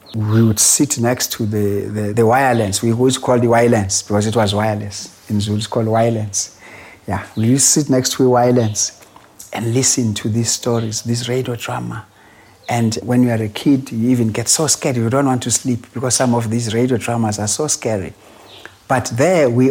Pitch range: 110-130 Hz